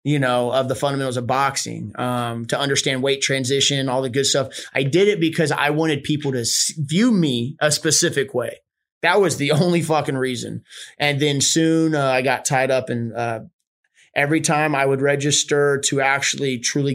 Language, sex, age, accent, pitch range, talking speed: English, male, 30-49, American, 125-145 Hz, 190 wpm